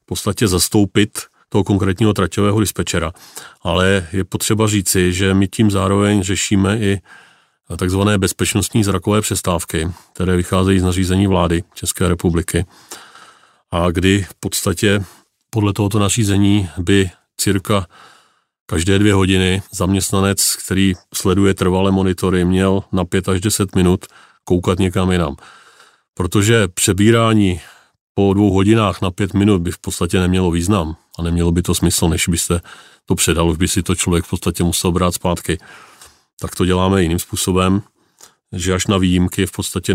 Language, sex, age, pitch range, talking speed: Czech, male, 30-49, 90-100 Hz, 145 wpm